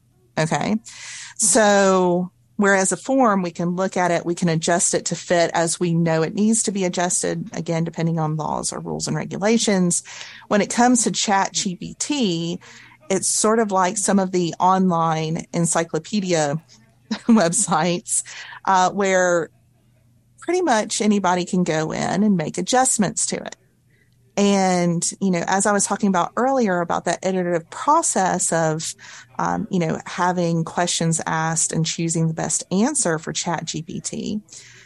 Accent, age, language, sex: American, 40-59, English, female